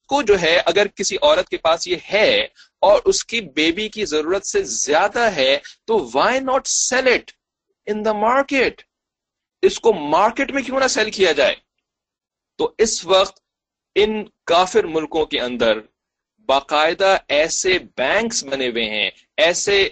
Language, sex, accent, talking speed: English, male, Indian, 145 wpm